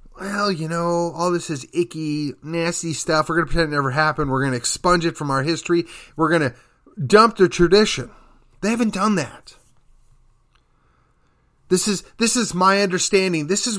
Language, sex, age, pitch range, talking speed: English, male, 30-49, 145-200 Hz, 185 wpm